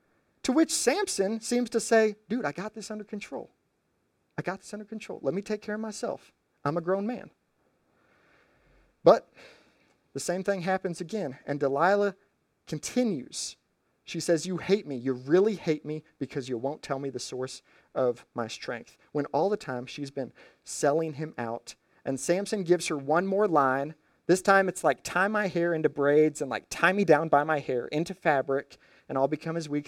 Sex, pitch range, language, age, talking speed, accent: male, 140-195 Hz, English, 30-49, 190 wpm, American